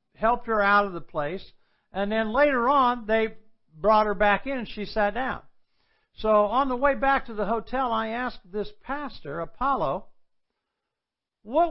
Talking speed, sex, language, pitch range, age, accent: 170 wpm, male, English, 190-245 Hz, 60-79, American